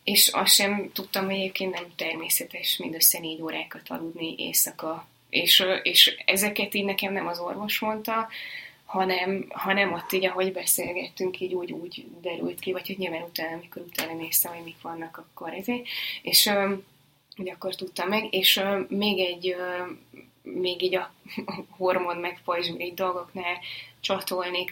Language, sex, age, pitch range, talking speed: Hungarian, female, 20-39, 175-195 Hz, 155 wpm